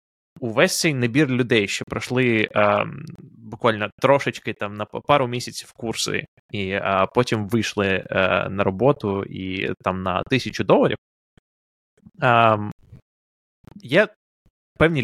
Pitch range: 105-135 Hz